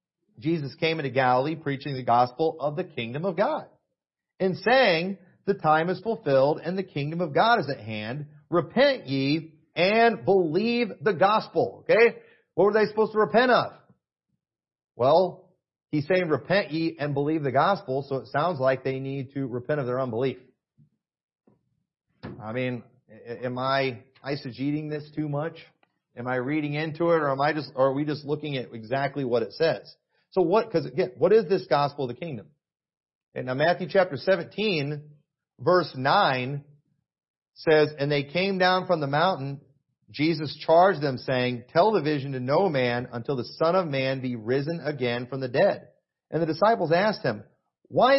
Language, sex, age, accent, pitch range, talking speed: English, male, 40-59, American, 135-180 Hz, 175 wpm